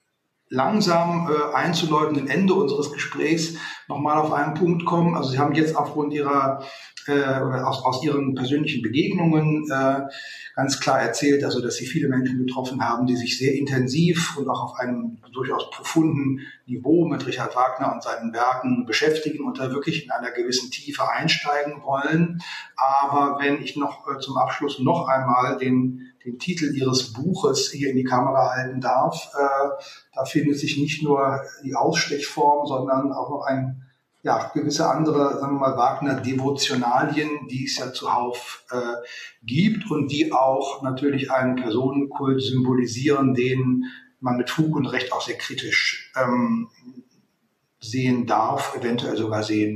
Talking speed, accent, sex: 155 wpm, German, male